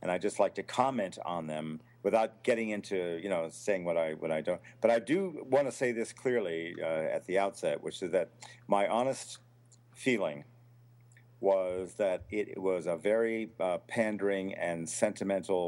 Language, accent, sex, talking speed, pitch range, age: English, American, male, 185 wpm, 100-125 Hz, 50-69